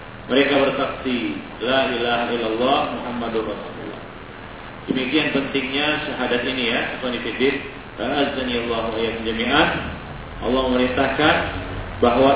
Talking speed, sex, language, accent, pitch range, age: 80 wpm, male, English, Indonesian, 120-155 Hz, 40-59